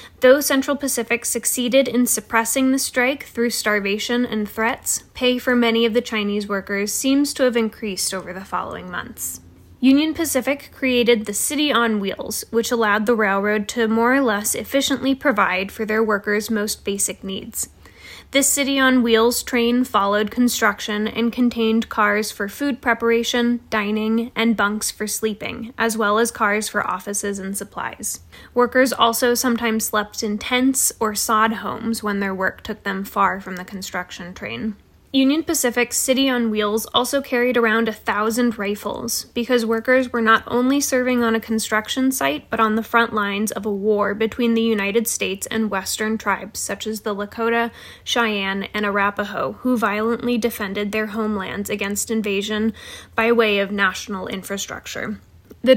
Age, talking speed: 10-29, 160 wpm